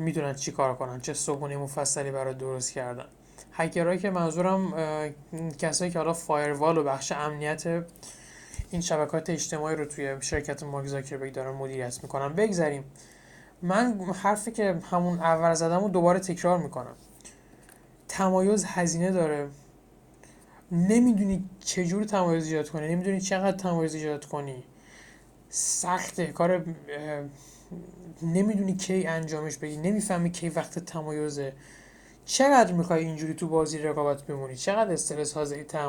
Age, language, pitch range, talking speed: 20-39, Persian, 150-190 Hz, 125 wpm